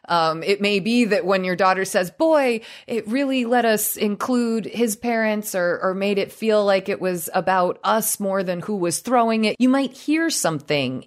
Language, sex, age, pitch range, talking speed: English, female, 20-39, 140-205 Hz, 200 wpm